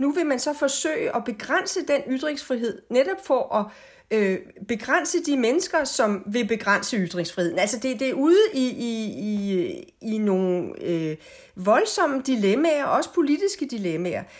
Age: 40-59